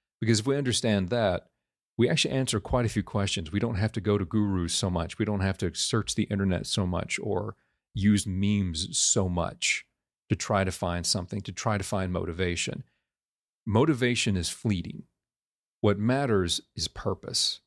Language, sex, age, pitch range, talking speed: English, male, 40-59, 95-115 Hz, 175 wpm